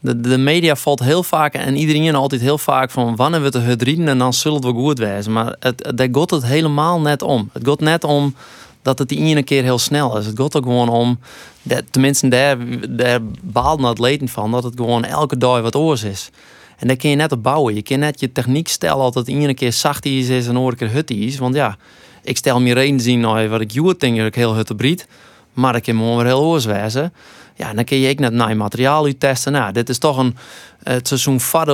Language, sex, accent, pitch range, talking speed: Dutch, male, Dutch, 120-140 Hz, 250 wpm